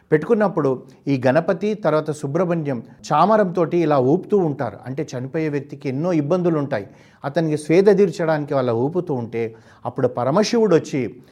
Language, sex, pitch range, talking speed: Telugu, male, 130-175 Hz, 120 wpm